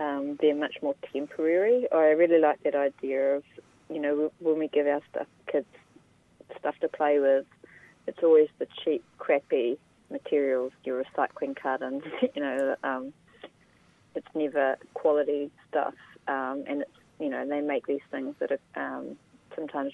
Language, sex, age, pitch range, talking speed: English, female, 30-49, 140-155 Hz, 155 wpm